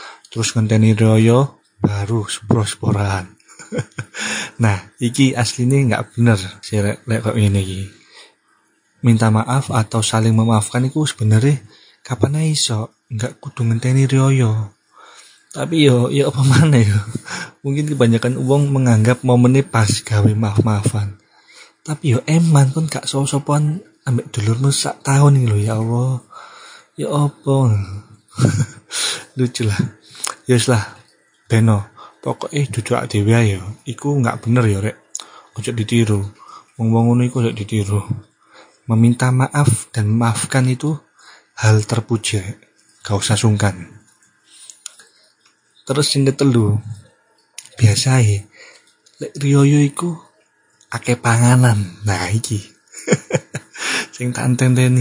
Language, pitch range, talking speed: Indonesian, 110-135 Hz, 110 wpm